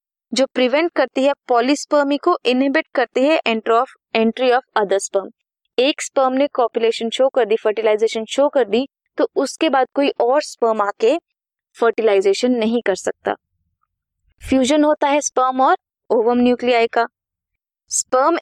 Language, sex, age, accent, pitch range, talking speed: Hindi, female, 20-39, native, 225-285 Hz, 90 wpm